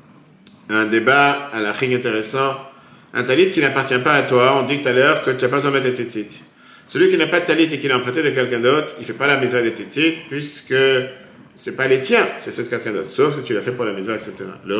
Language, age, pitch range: French, 50-69, 125-165 Hz